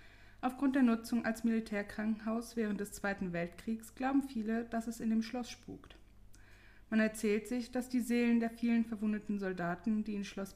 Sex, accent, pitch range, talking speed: female, German, 170-235 Hz, 170 wpm